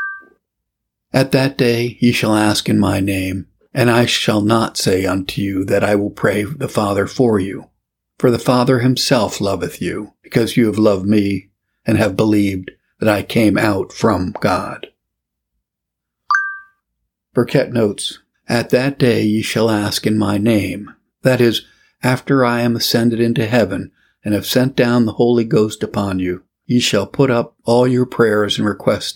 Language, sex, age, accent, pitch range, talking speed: English, male, 50-69, American, 100-125 Hz, 165 wpm